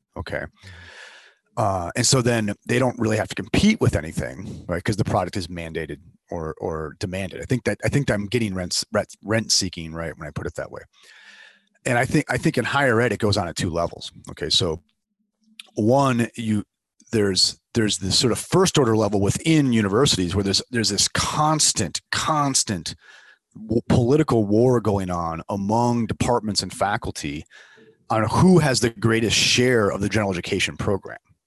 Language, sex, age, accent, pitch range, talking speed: English, male, 30-49, American, 100-125 Hz, 175 wpm